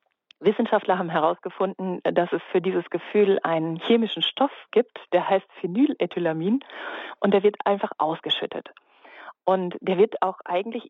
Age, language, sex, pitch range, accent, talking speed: 40-59, German, female, 175-215 Hz, German, 140 wpm